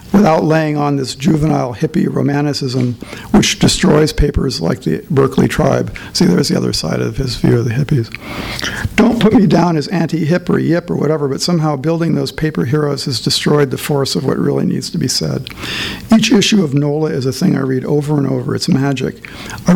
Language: English